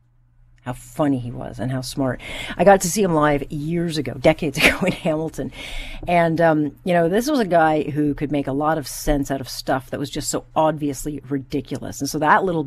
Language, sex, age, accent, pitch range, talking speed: English, female, 40-59, American, 130-155 Hz, 225 wpm